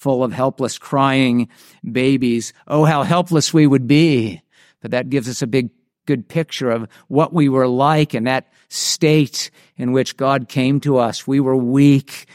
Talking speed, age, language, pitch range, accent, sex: 175 wpm, 50-69, English, 125-155 Hz, American, male